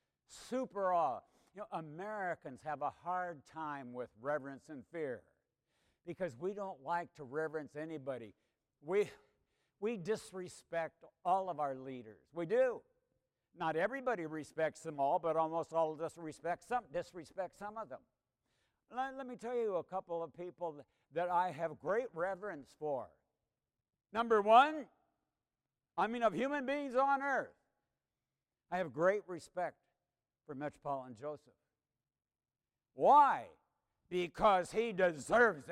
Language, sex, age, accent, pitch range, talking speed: English, male, 60-79, American, 160-235 Hz, 135 wpm